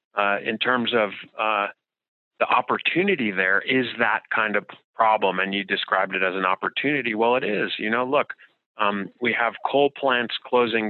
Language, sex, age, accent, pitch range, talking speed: English, male, 30-49, American, 95-115 Hz, 175 wpm